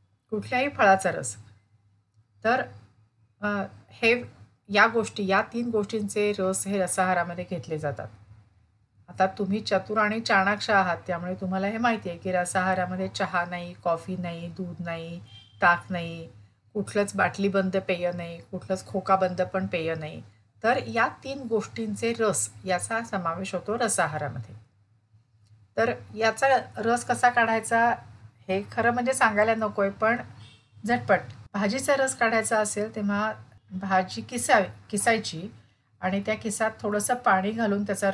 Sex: female